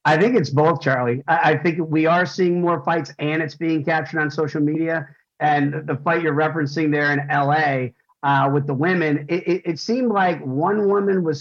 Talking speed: 210 wpm